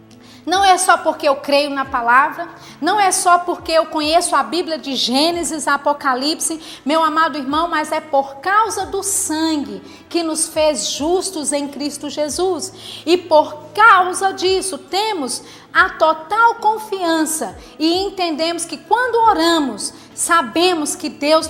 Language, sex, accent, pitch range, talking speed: Portuguese, female, Brazilian, 295-345 Hz, 140 wpm